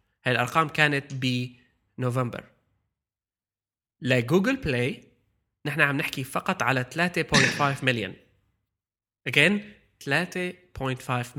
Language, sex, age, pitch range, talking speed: Arabic, male, 20-39, 125-155 Hz, 85 wpm